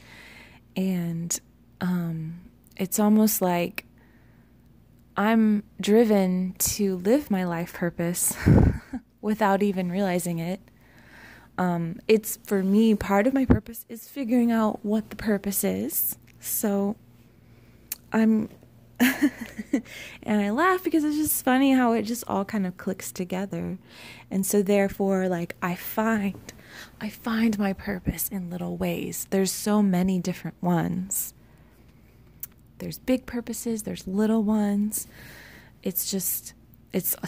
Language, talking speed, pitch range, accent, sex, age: English, 120 wpm, 180-220 Hz, American, female, 20-39